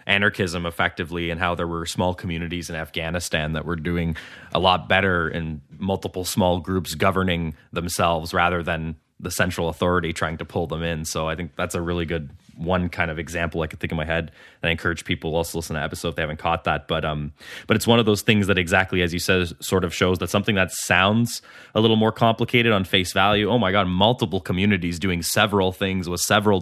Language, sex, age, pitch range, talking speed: English, male, 20-39, 85-100 Hz, 225 wpm